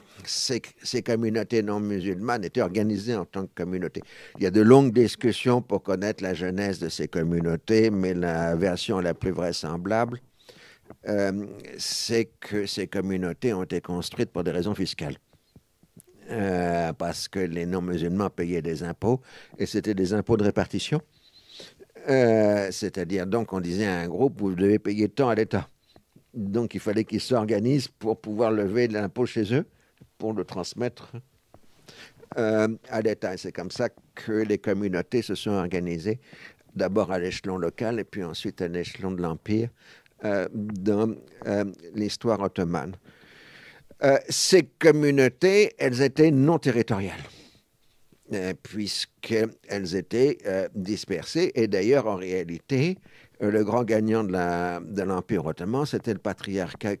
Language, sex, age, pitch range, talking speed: French, male, 60-79, 90-115 Hz, 155 wpm